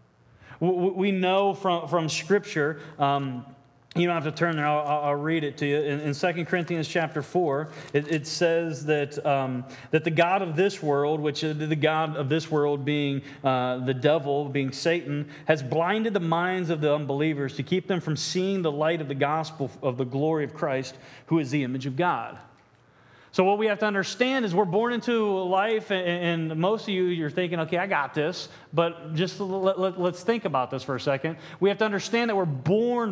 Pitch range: 150-185 Hz